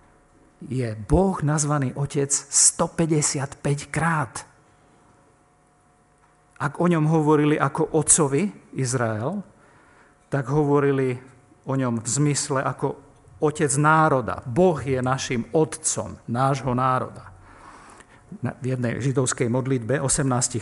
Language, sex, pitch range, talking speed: Slovak, male, 125-155 Hz, 95 wpm